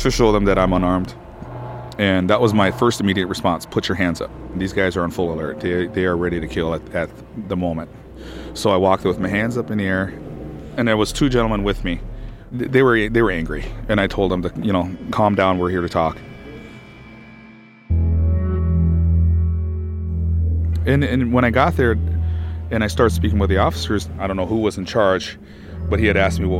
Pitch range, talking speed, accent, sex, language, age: 85-100 Hz, 215 wpm, American, male, English, 30-49